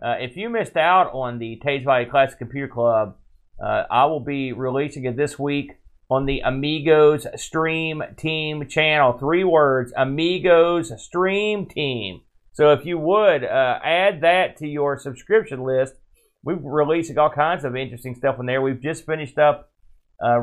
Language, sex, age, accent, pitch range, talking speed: English, male, 40-59, American, 125-155 Hz, 165 wpm